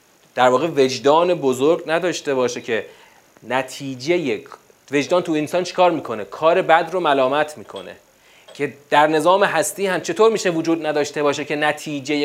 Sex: male